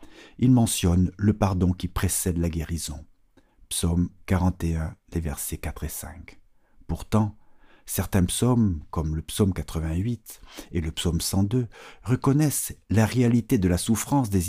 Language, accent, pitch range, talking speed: French, French, 85-110 Hz, 135 wpm